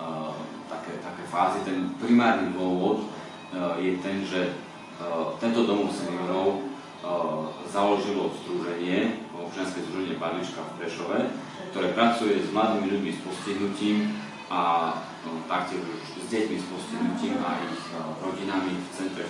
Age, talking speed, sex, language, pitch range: 40-59, 110 wpm, male, Slovak, 90-100 Hz